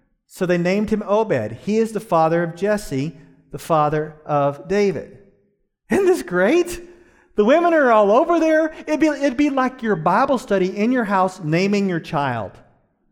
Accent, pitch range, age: American, 150-230 Hz, 40-59